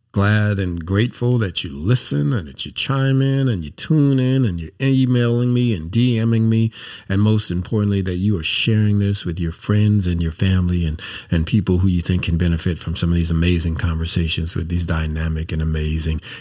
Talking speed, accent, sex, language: 200 wpm, American, male, English